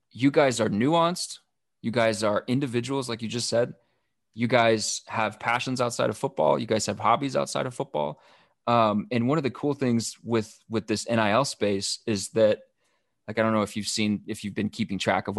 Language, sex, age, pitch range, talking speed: English, male, 20-39, 105-120 Hz, 205 wpm